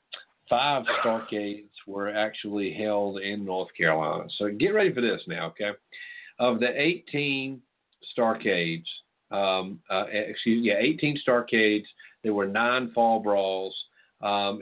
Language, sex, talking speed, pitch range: English, male, 125 wpm, 100-130 Hz